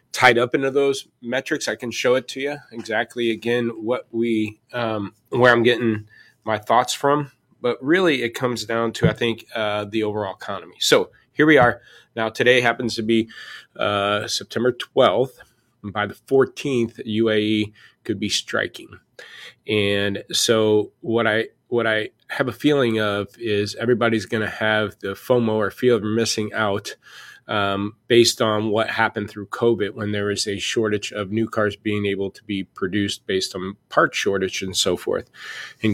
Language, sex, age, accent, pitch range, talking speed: English, male, 30-49, American, 105-120 Hz, 170 wpm